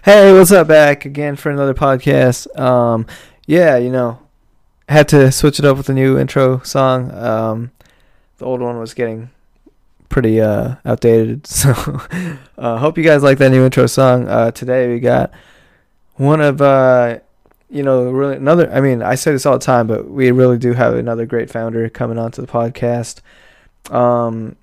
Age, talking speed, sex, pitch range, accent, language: 20-39, 180 wpm, male, 120-135 Hz, American, English